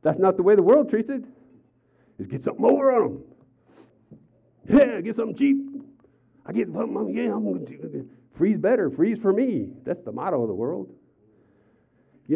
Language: English